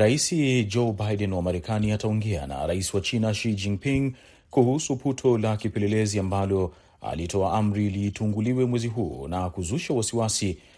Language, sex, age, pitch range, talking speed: Swahili, male, 30-49, 100-120 Hz, 140 wpm